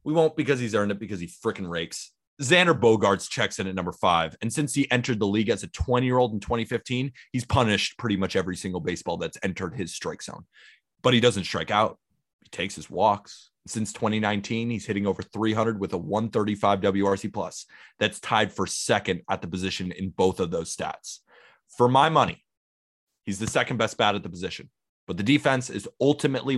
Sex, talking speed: male, 205 wpm